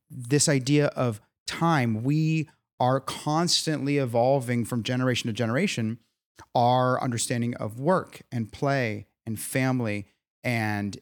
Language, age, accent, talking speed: English, 30-49, American, 115 wpm